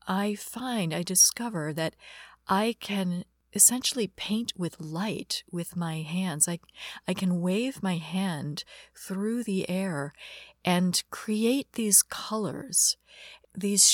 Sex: female